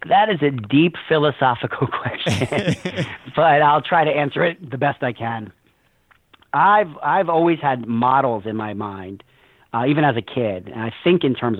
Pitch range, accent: 115-150 Hz, American